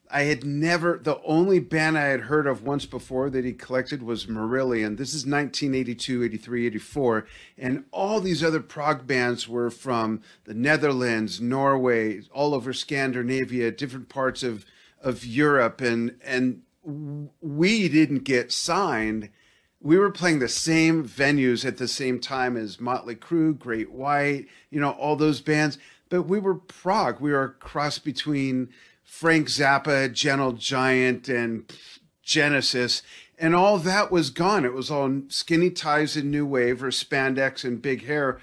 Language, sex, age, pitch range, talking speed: English, male, 40-59, 125-155 Hz, 155 wpm